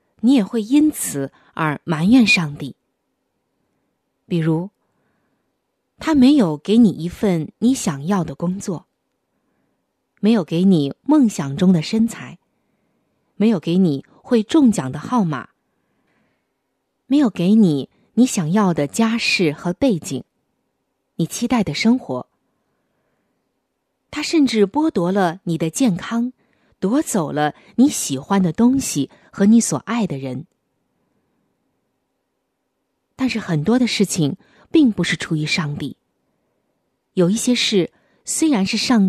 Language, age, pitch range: Chinese, 20-39, 160-240 Hz